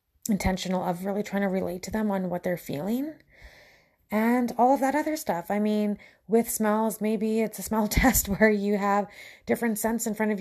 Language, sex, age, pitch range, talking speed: English, female, 20-39, 190-220 Hz, 200 wpm